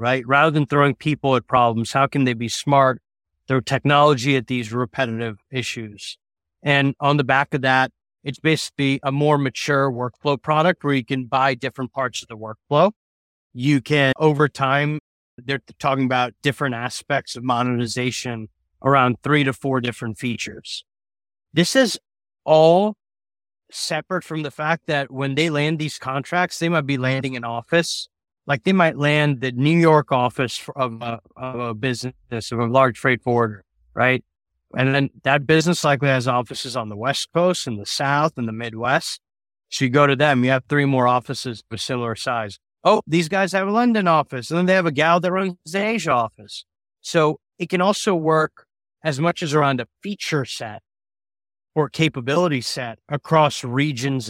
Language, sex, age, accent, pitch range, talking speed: English, male, 30-49, American, 120-150 Hz, 175 wpm